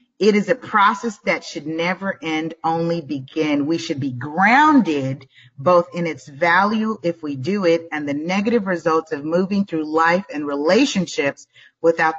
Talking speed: 160 wpm